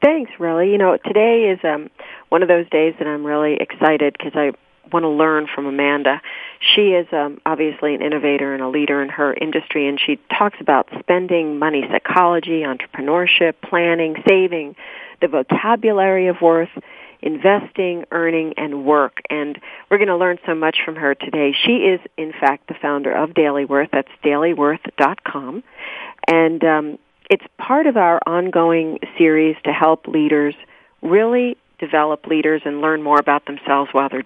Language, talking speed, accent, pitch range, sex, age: English, 165 wpm, American, 150-180 Hz, female, 40-59